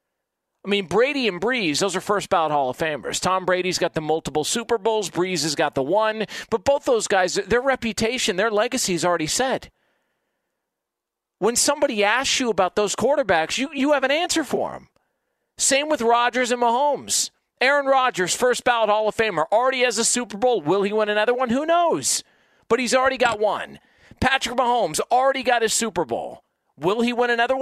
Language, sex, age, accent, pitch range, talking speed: English, male, 40-59, American, 200-260 Hz, 195 wpm